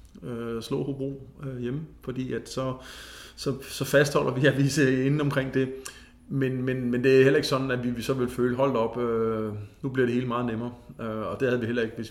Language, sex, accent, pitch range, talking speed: Danish, male, native, 105-125 Hz, 225 wpm